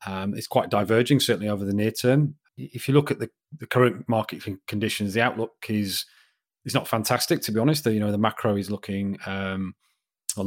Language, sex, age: English, male, 30-49